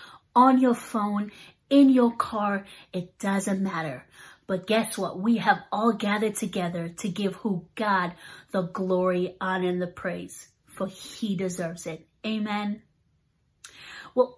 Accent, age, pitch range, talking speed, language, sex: American, 30-49, 190-245 Hz, 140 wpm, English, female